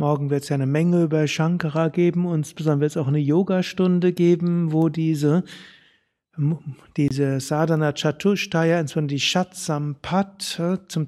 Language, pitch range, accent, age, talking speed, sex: German, 145-180 Hz, German, 60-79, 140 wpm, male